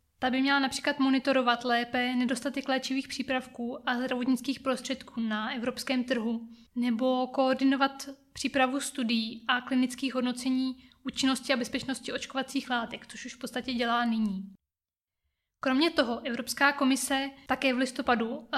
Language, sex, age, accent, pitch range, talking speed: Czech, female, 20-39, native, 245-275 Hz, 130 wpm